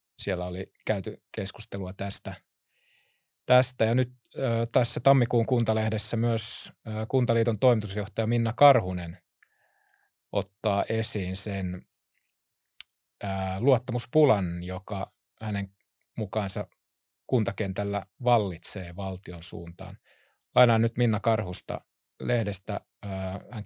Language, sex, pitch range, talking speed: Finnish, male, 95-120 Hz, 95 wpm